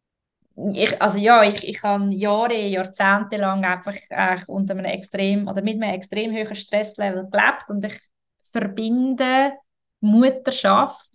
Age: 20-39